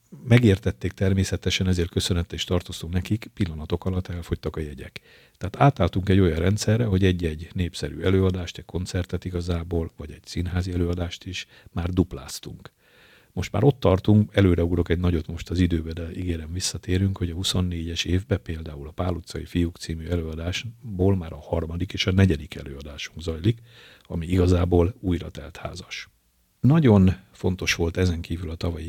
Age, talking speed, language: 50-69, 160 wpm, Hungarian